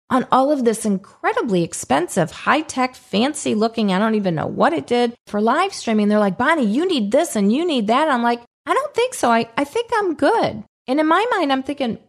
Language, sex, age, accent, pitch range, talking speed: English, female, 40-59, American, 175-245 Hz, 235 wpm